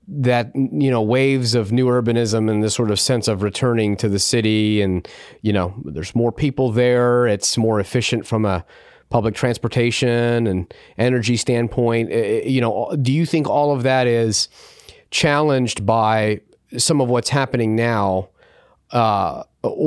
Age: 30-49